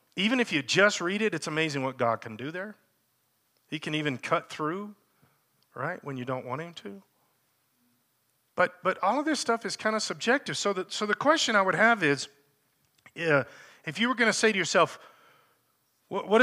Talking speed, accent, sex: 195 wpm, American, male